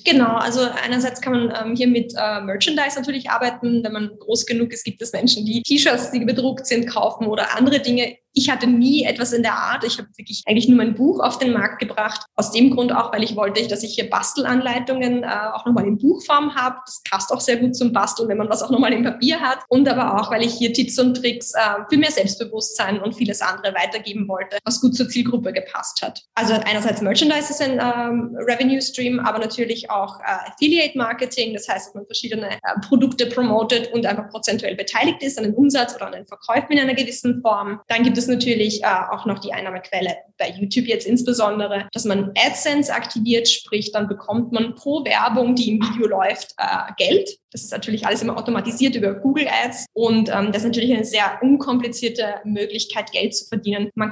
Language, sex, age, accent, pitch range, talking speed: German, female, 20-39, German, 215-250 Hz, 210 wpm